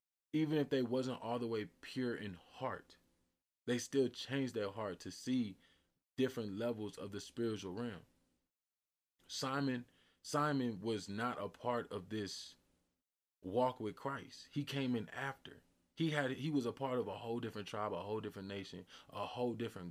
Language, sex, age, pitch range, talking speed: English, male, 20-39, 100-135 Hz, 165 wpm